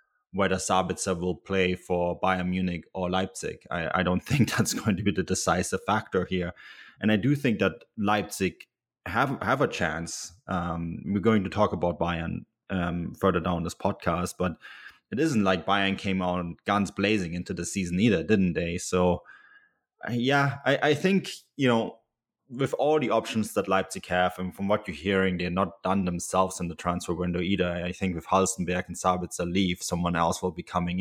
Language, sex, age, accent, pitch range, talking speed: English, male, 20-39, German, 90-100 Hz, 190 wpm